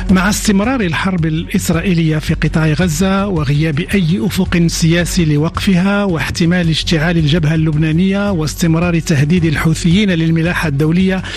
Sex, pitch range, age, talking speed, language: male, 165-195 Hz, 50-69, 110 wpm, Arabic